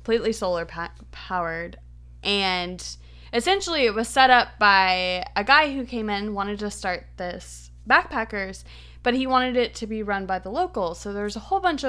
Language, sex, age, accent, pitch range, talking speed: English, female, 20-39, American, 185-225 Hz, 185 wpm